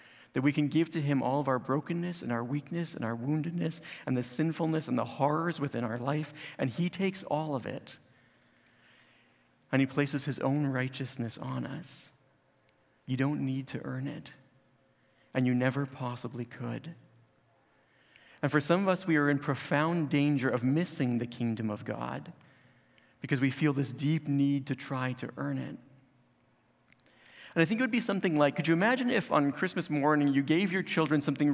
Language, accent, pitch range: English, American, 135-165 Hz